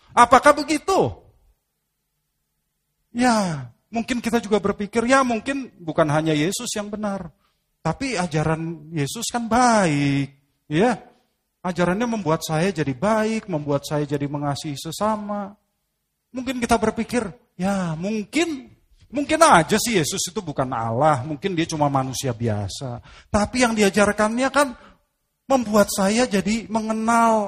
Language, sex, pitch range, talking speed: Indonesian, male, 155-220 Hz, 120 wpm